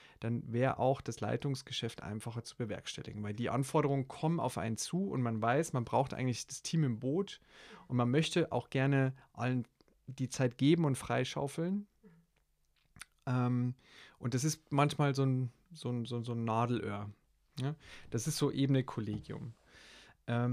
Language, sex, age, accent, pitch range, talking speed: German, male, 30-49, German, 120-145 Hz, 145 wpm